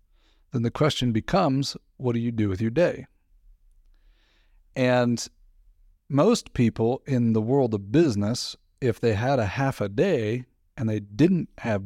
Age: 40-59